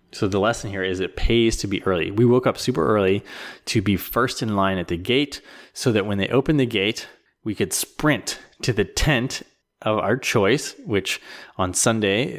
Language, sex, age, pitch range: English, male, 20-39, 95-115 Hz